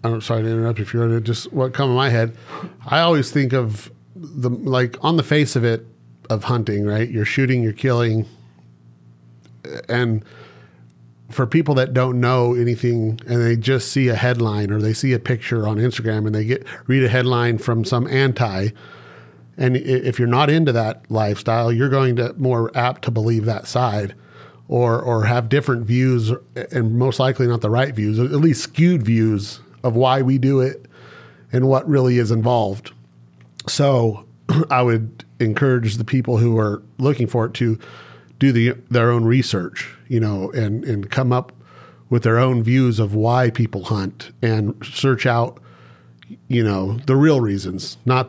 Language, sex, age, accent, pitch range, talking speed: English, male, 40-59, American, 110-130 Hz, 175 wpm